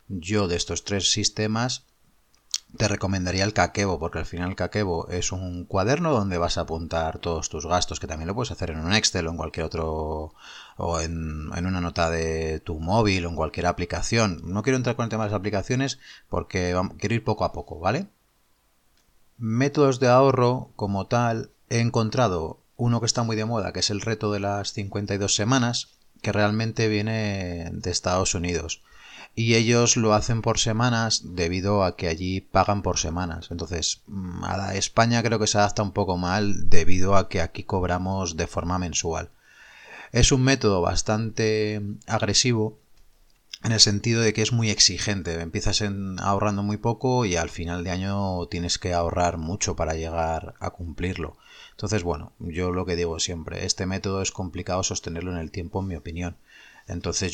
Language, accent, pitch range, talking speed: Spanish, Spanish, 85-110 Hz, 180 wpm